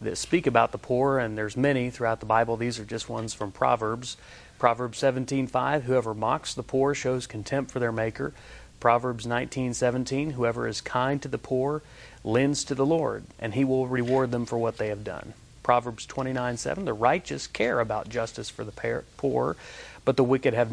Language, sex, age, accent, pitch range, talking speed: English, male, 40-59, American, 115-135 Hz, 190 wpm